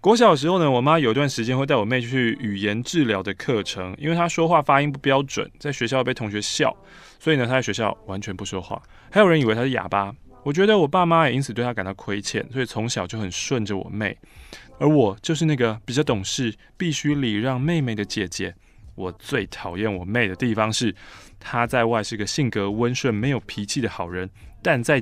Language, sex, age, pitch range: Chinese, male, 20-39, 105-160 Hz